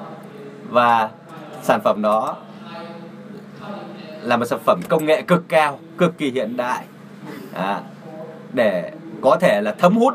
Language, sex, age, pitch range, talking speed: Vietnamese, male, 20-39, 165-215 Hz, 135 wpm